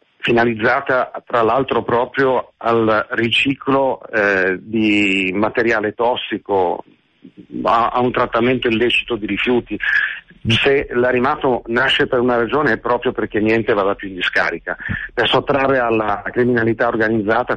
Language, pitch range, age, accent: Italian, 105-125 Hz, 50-69, native